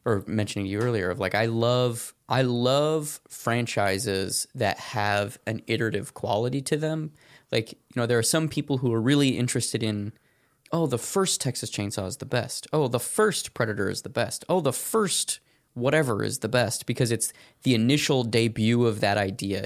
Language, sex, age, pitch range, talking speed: English, male, 20-39, 105-130 Hz, 185 wpm